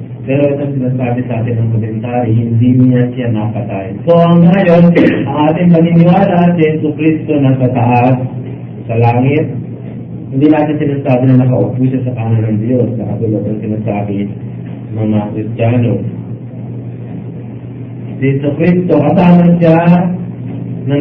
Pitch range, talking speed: 115-150 Hz, 135 wpm